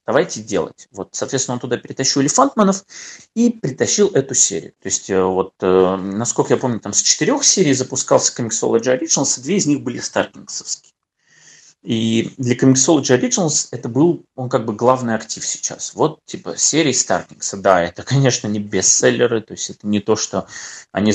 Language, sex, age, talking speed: Russian, male, 30-49, 170 wpm